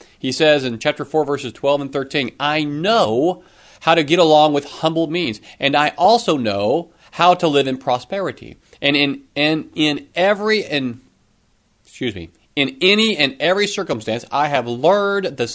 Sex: male